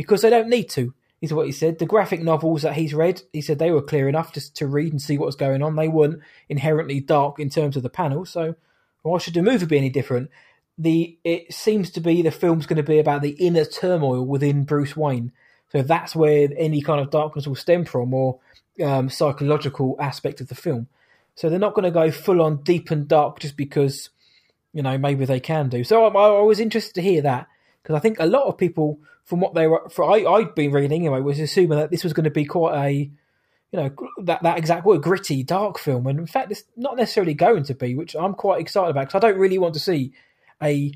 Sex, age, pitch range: male, 20-39, 145-170 Hz